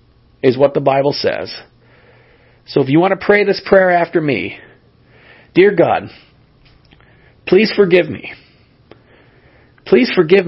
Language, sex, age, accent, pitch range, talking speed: English, male, 40-59, American, 125-180 Hz, 125 wpm